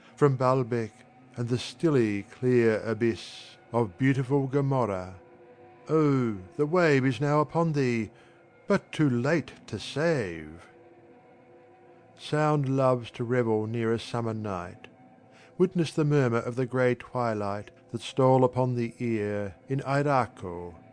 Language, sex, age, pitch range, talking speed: English, male, 60-79, 115-140 Hz, 125 wpm